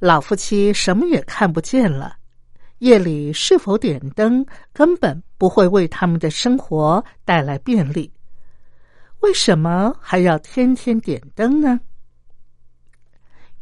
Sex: female